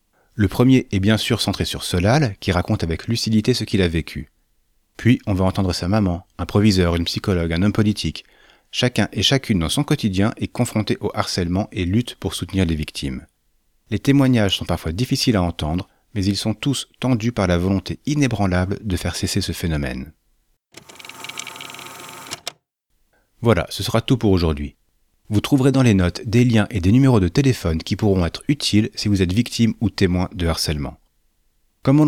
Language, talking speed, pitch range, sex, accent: French, 185 wpm, 90-120 Hz, male, French